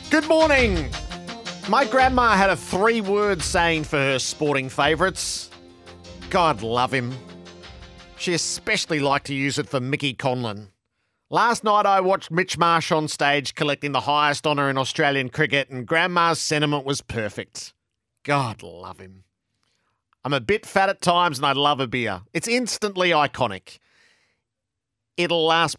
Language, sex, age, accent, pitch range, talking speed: English, male, 40-59, Australian, 125-185 Hz, 145 wpm